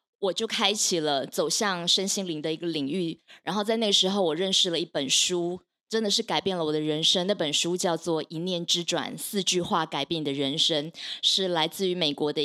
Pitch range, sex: 165-210 Hz, female